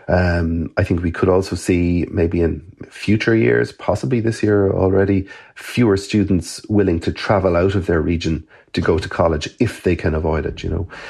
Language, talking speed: English, 190 wpm